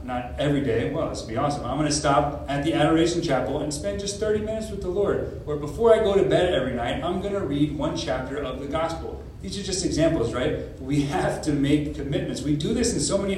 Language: English